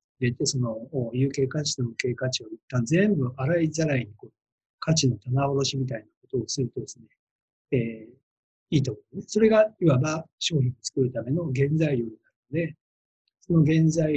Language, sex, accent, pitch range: Japanese, male, native, 125-170 Hz